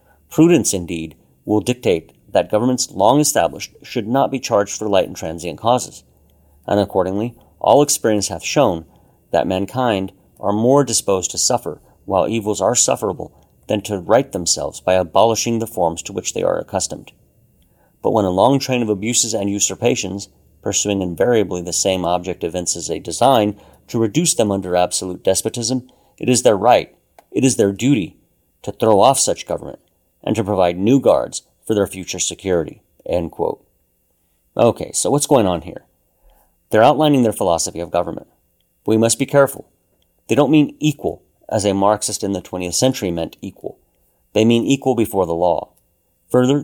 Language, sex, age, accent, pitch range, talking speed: English, male, 40-59, American, 85-120 Hz, 165 wpm